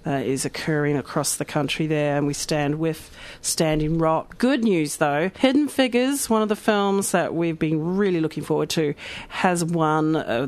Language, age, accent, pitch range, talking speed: English, 40-59, Australian, 150-200 Hz, 185 wpm